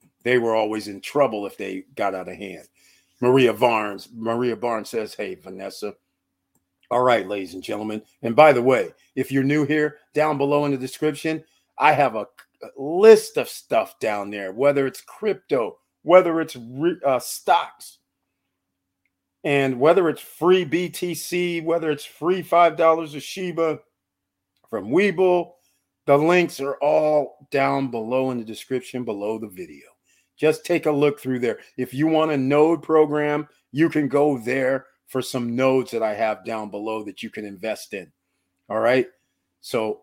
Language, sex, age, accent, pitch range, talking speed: English, male, 40-59, American, 115-150 Hz, 160 wpm